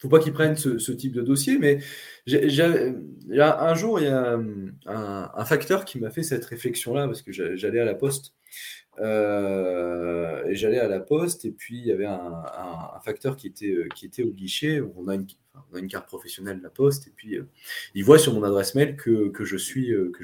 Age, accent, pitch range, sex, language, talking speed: 20-39, French, 95-135 Hz, male, French, 220 wpm